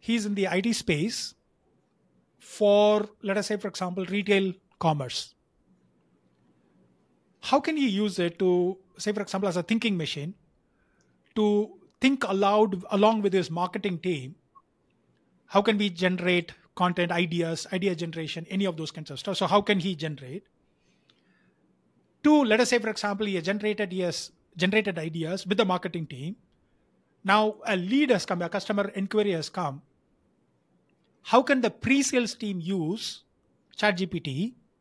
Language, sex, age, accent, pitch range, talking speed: English, male, 30-49, Indian, 180-210 Hz, 145 wpm